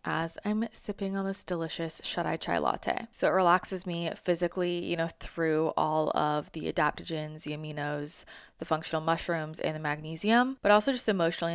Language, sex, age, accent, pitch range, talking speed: English, female, 20-39, American, 160-195 Hz, 170 wpm